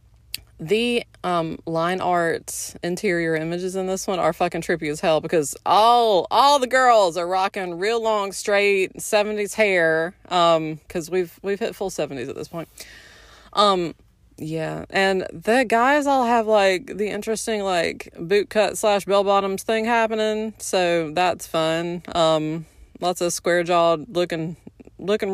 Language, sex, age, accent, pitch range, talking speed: English, female, 20-39, American, 170-210 Hz, 150 wpm